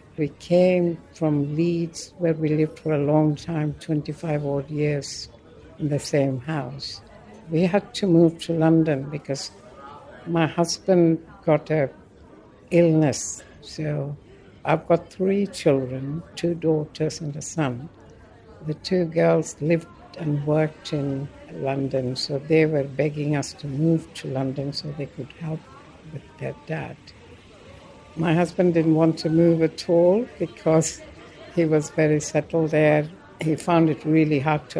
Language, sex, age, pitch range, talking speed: English, female, 60-79, 145-170 Hz, 145 wpm